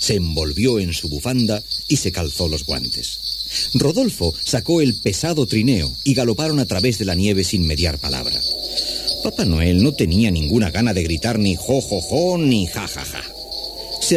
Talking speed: 180 wpm